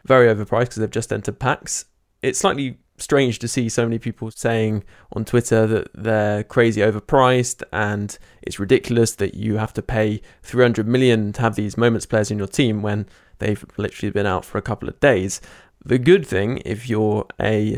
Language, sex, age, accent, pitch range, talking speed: English, male, 20-39, British, 105-120 Hz, 190 wpm